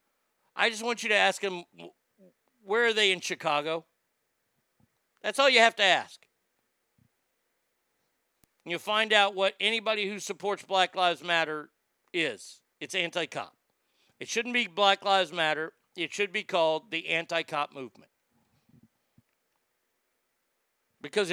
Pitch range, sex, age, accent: 155-195 Hz, male, 50-69, American